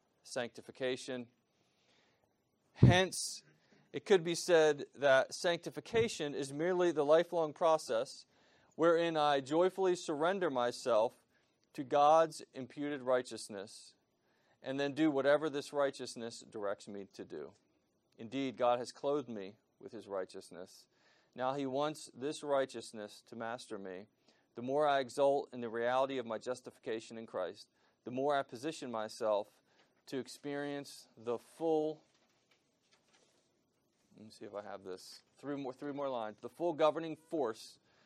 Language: English